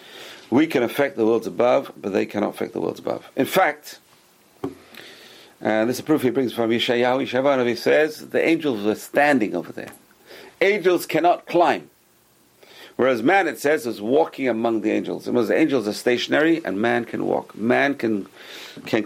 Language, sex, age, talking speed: English, male, 50-69, 185 wpm